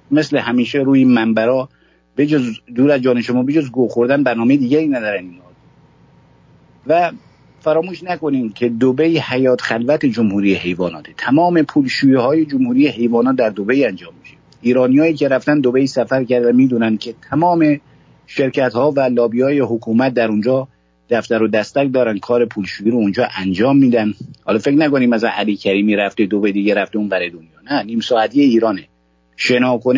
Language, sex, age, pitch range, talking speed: English, male, 50-69, 110-150 Hz, 155 wpm